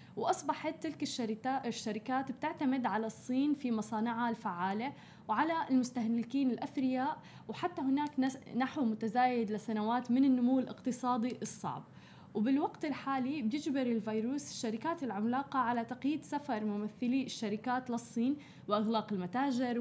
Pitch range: 215-260 Hz